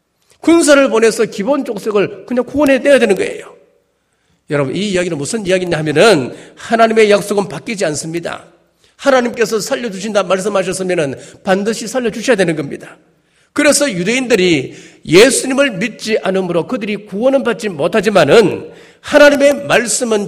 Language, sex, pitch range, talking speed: English, male, 195-275 Hz, 110 wpm